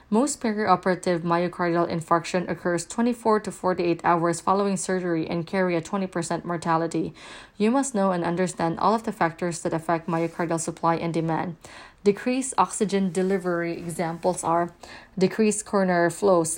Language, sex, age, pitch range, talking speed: English, female, 20-39, 175-200 Hz, 140 wpm